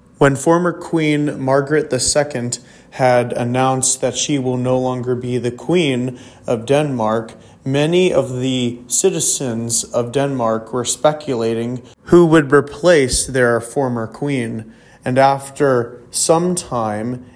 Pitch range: 120-145 Hz